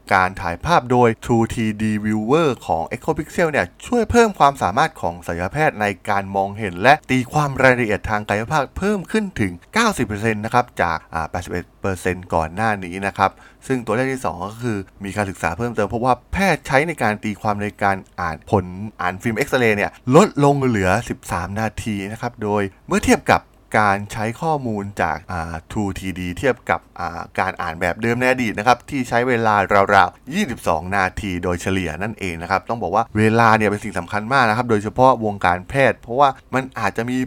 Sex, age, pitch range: male, 20-39, 95-125 Hz